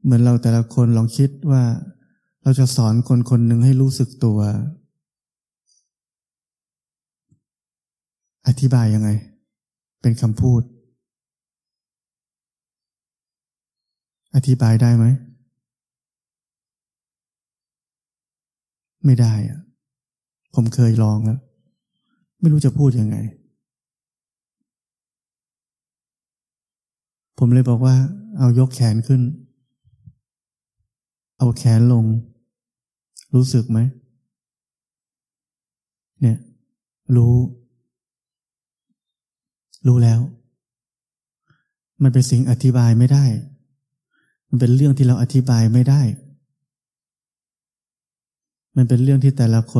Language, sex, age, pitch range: Thai, male, 20-39, 120-135 Hz